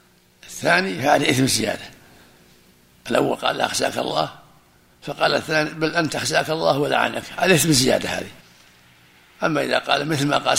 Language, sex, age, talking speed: Arabic, male, 60-79, 145 wpm